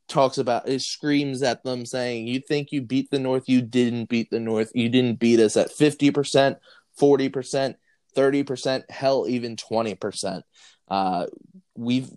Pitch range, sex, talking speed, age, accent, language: 110-130 Hz, male, 170 wpm, 20-39, American, English